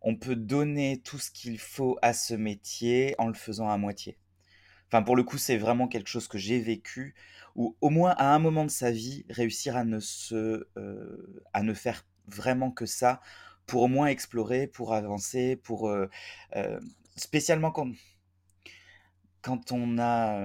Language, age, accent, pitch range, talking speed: French, 20-39, French, 100-125 Hz, 175 wpm